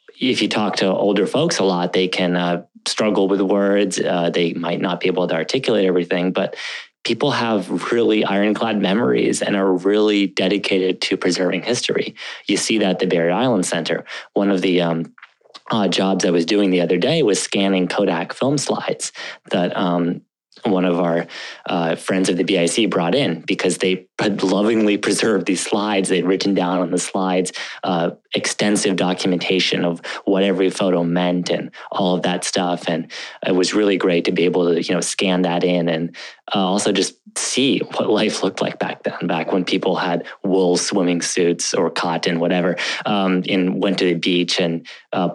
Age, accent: 30-49, American